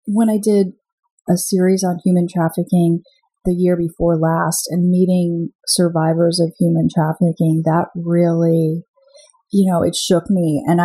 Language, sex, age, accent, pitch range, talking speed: English, female, 30-49, American, 175-220 Hz, 145 wpm